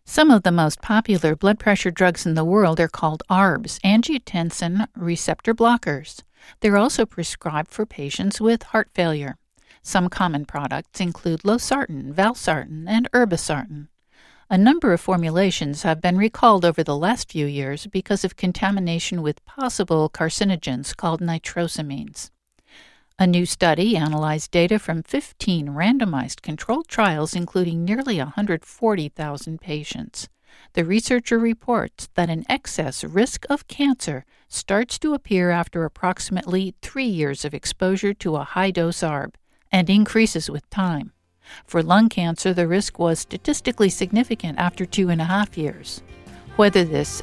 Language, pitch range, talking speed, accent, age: English, 160-215 Hz, 140 wpm, American, 60-79